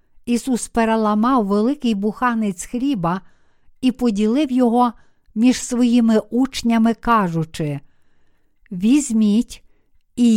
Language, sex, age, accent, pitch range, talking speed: Ukrainian, female, 50-69, native, 210-250 Hz, 80 wpm